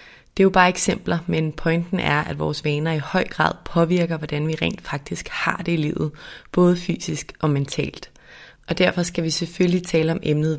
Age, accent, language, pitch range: 30-49, native, Danish, 160-185 Hz